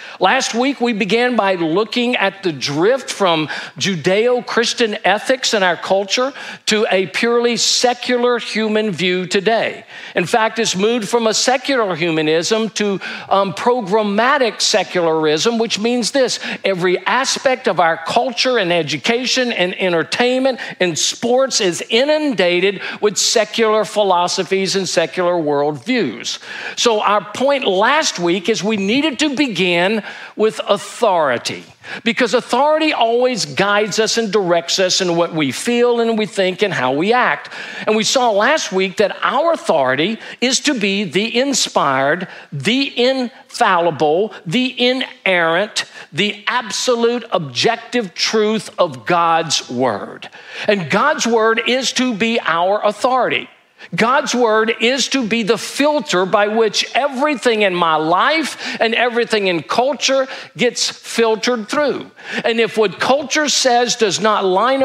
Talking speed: 135 wpm